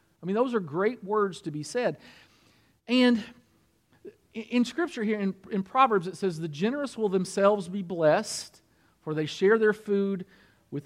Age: 50-69